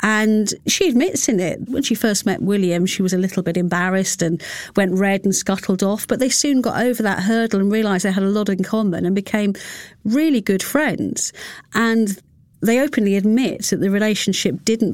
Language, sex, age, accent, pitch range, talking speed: English, female, 50-69, British, 190-230 Hz, 200 wpm